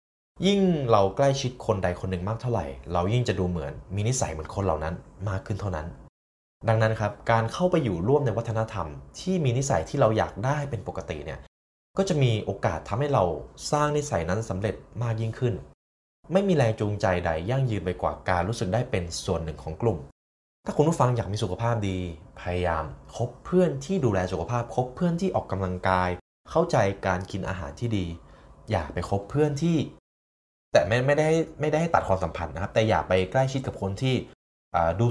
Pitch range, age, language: 85-120 Hz, 20-39, Thai